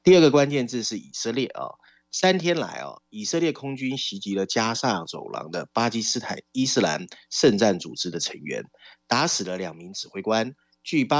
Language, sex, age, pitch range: Chinese, male, 30-49, 95-155 Hz